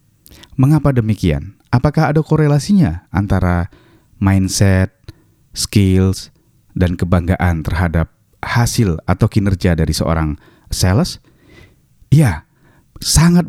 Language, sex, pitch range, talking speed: Indonesian, male, 90-115 Hz, 85 wpm